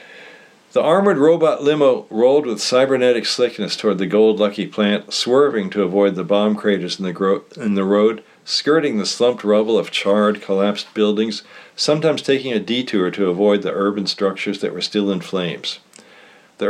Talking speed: 160 wpm